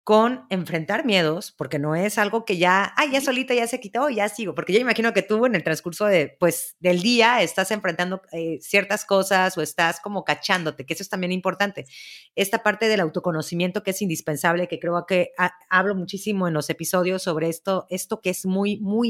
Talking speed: 200 wpm